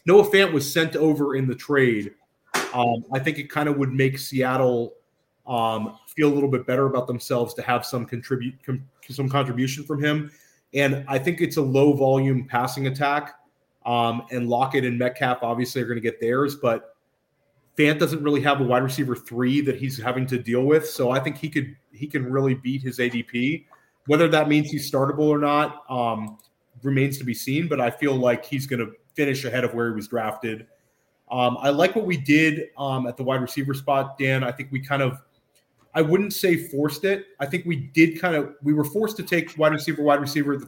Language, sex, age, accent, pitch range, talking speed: English, male, 30-49, American, 125-145 Hz, 215 wpm